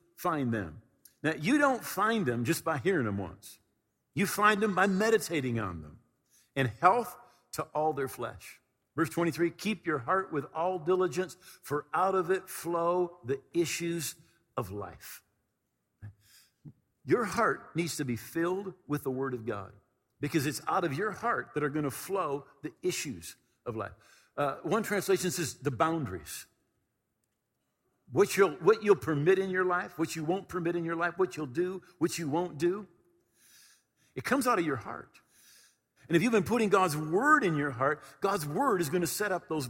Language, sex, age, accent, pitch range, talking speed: English, male, 50-69, American, 140-190 Hz, 180 wpm